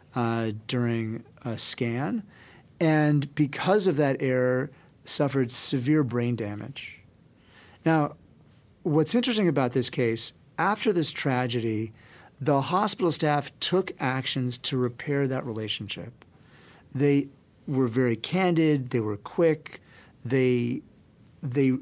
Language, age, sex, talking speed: English, 40-59, male, 110 wpm